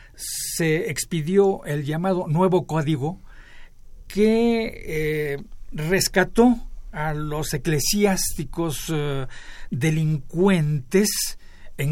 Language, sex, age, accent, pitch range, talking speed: Spanish, male, 60-79, Mexican, 140-185 Hz, 75 wpm